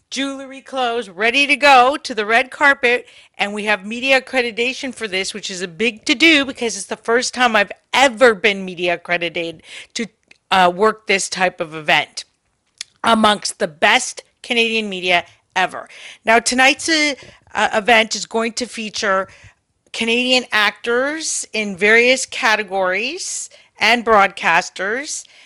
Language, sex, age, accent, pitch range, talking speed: English, female, 40-59, American, 195-245 Hz, 140 wpm